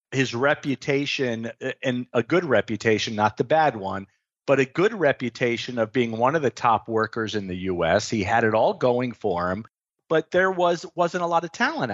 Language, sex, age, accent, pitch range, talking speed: English, male, 40-59, American, 110-150 Hz, 200 wpm